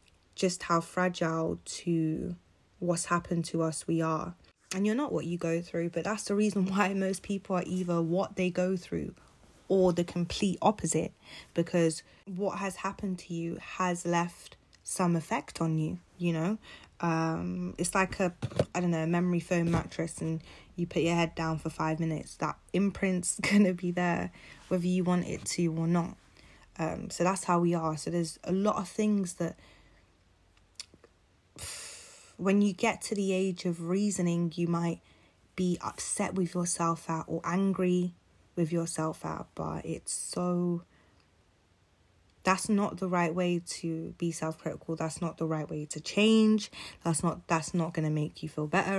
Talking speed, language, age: 175 wpm, English, 20-39